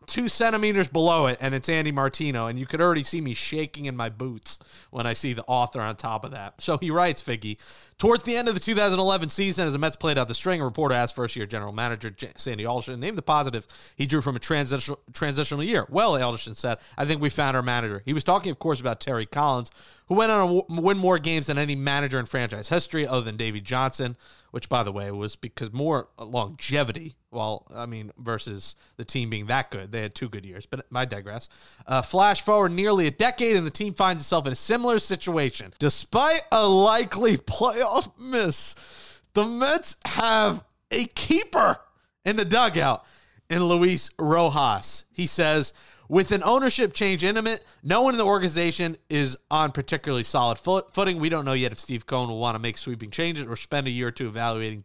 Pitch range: 120-185 Hz